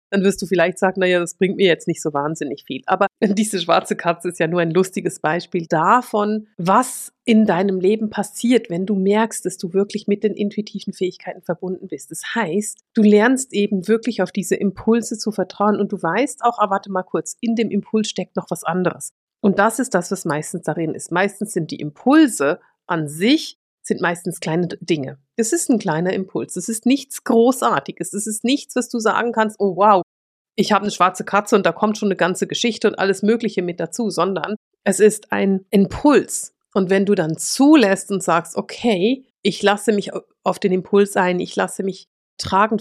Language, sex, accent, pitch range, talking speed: German, female, German, 180-220 Hz, 205 wpm